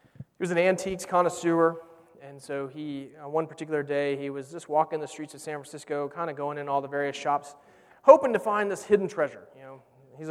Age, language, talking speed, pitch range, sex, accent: 30-49, English, 225 wpm, 150-195 Hz, male, American